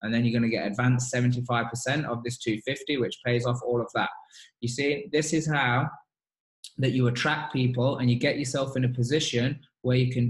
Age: 20-39